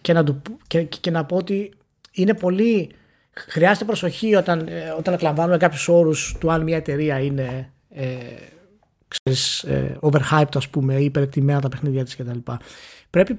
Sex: male